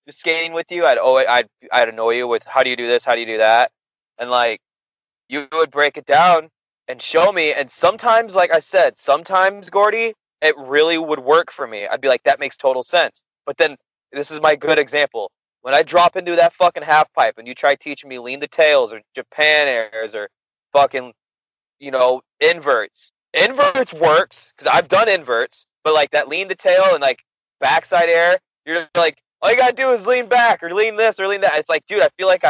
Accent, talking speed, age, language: American, 225 wpm, 20-39, English